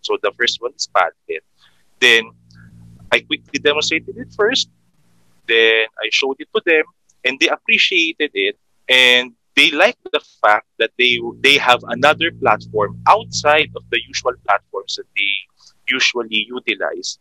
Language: English